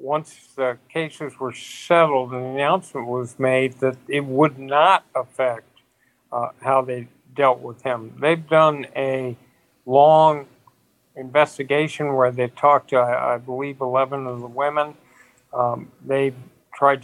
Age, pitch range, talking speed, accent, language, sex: 50-69, 130-155 Hz, 135 wpm, American, English, male